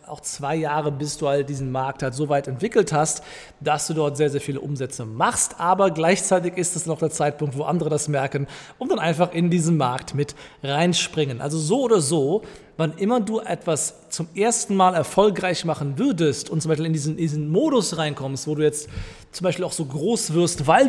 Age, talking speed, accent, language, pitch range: 40-59, 200 wpm, German, German, 145-175 Hz